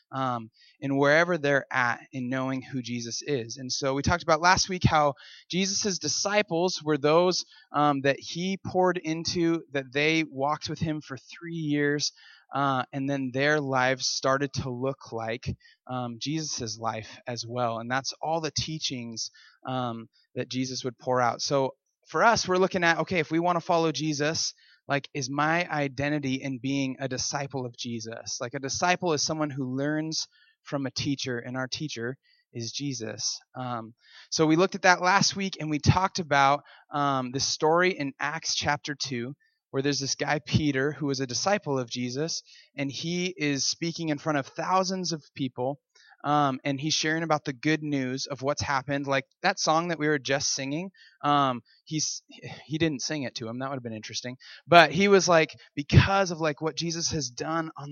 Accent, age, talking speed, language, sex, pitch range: American, 20-39, 190 wpm, English, male, 130-160 Hz